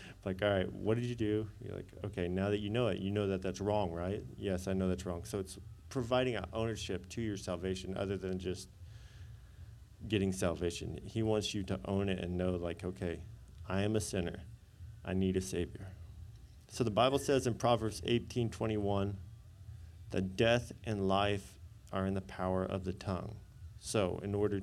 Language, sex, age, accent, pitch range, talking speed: English, male, 40-59, American, 95-110 Hz, 195 wpm